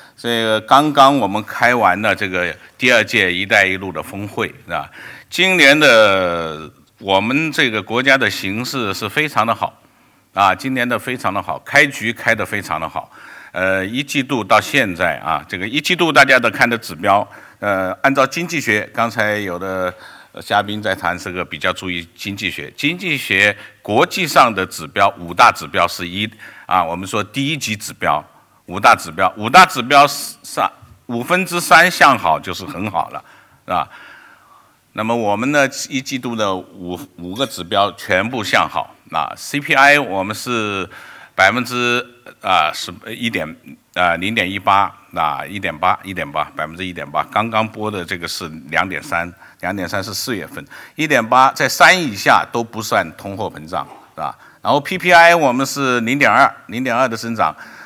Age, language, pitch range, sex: 50-69, English, 95-135 Hz, male